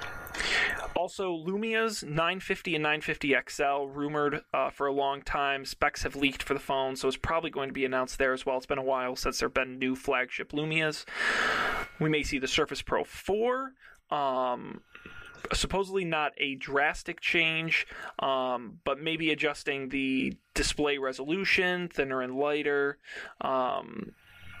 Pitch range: 135-175 Hz